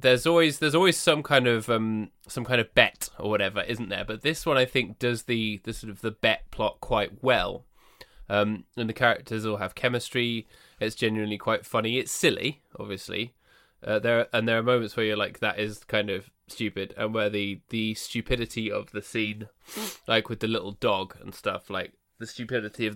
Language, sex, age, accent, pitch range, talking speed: English, male, 20-39, British, 105-120 Hz, 205 wpm